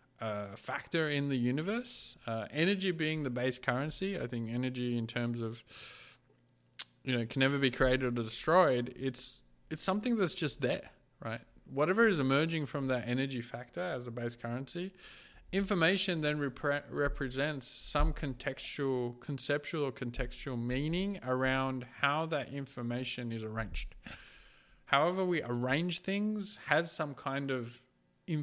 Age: 20-39